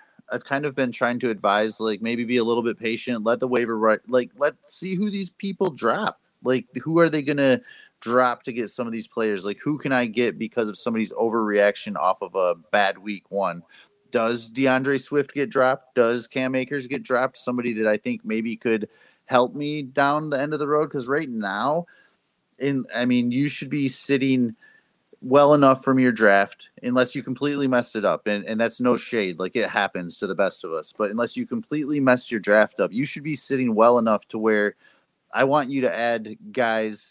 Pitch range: 110-135 Hz